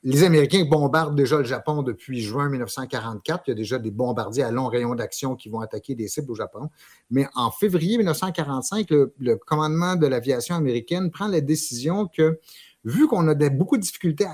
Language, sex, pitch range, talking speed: French, male, 125-160 Hz, 195 wpm